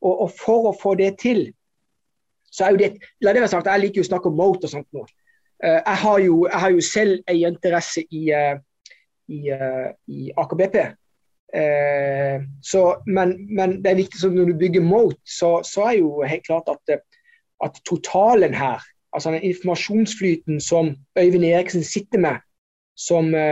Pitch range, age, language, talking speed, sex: 165-200 Hz, 20-39, English, 160 wpm, male